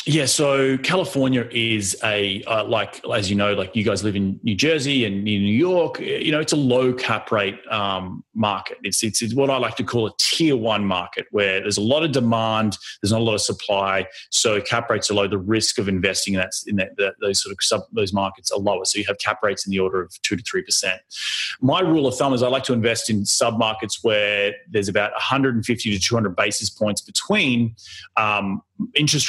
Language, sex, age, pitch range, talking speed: English, male, 30-49, 105-135 Hz, 225 wpm